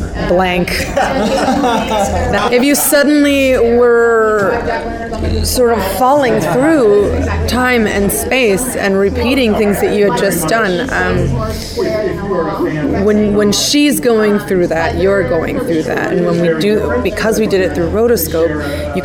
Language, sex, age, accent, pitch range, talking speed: English, female, 30-49, American, 155-210 Hz, 130 wpm